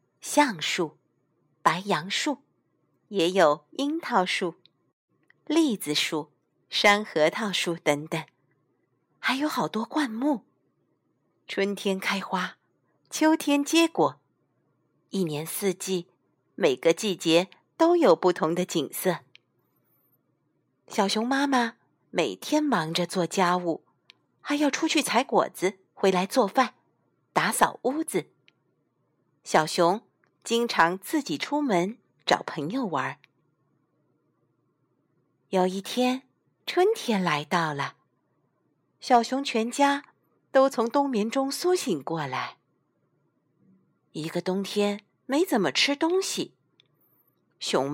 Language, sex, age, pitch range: Chinese, female, 50-69, 175-270 Hz